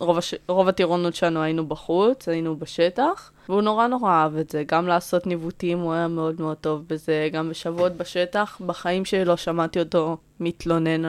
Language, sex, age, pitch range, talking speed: Hebrew, female, 20-39, 160-185 Hz, 170 wpm